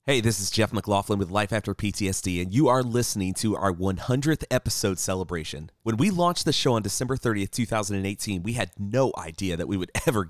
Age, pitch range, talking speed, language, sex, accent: 30-49, 100-125 Hz, 205 wpm, English, male, American